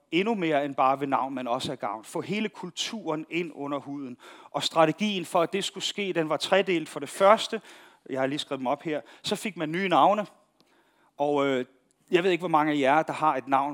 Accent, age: native, 40-59